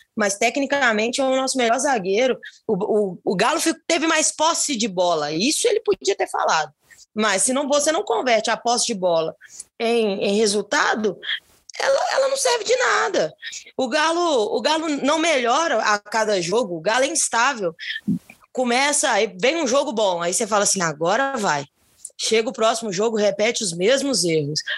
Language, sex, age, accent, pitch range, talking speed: Portuguese, female, 20-39, Brazilian, 205-280 Hz, 175 wpm